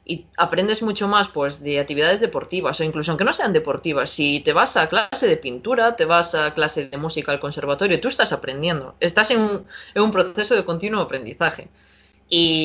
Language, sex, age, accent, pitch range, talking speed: Spanish, female, 20-39, Spanish, 155-190 Hz, 195 wpm